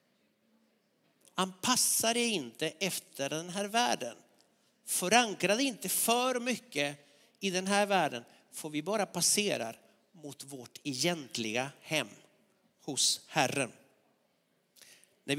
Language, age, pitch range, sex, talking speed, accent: Swedish, 50-69, 165-220 Hz, male, 100 wpm, native